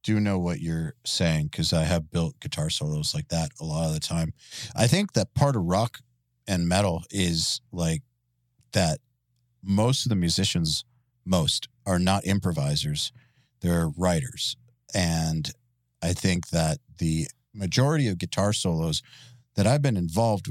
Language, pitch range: English, 85-125 Hz